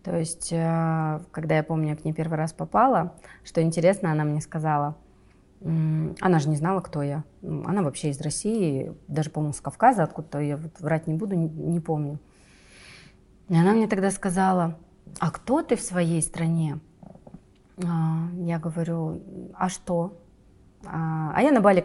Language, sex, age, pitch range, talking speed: Russian, female, 30-49, 155-180 Hz, 155 wpm